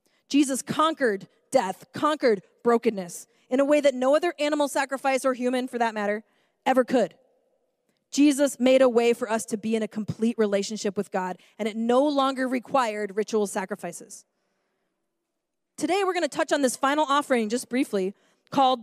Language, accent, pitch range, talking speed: English, American, 225-295 Hz, 165 wpm